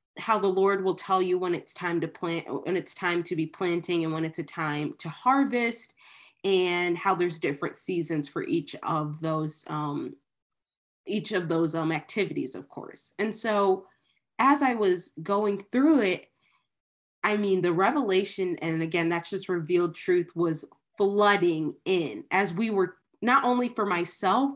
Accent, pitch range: American, 175-220 Hz